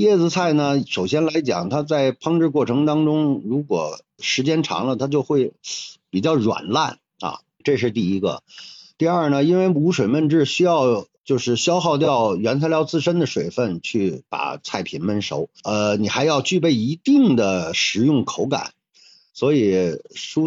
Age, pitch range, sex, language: 50-69, 120-160 Hz, male, Chinese